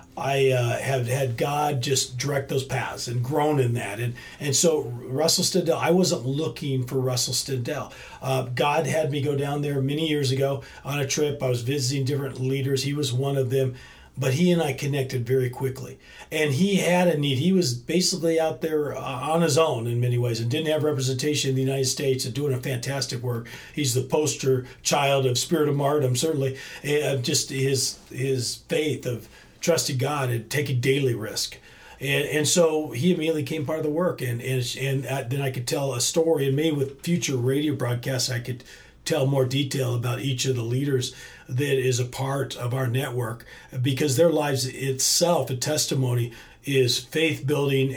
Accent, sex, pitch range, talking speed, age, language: American, male, 130-150 Hz, 195 wpm, 40-59, English